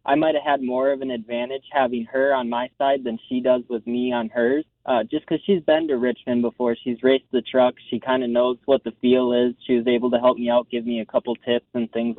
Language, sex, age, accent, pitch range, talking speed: English, male, 20-39, American, 120-140 Hz, 265 wpm